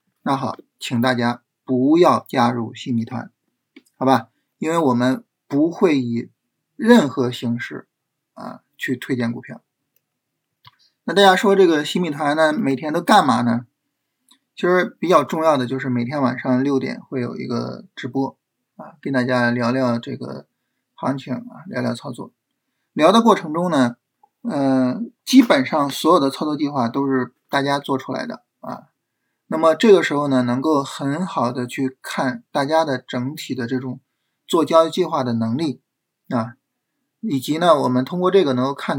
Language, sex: Chinese, male